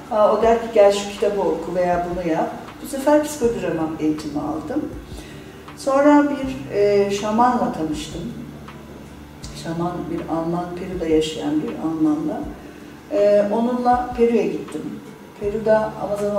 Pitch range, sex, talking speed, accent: 160-225 Hz, female, 125 wpm, native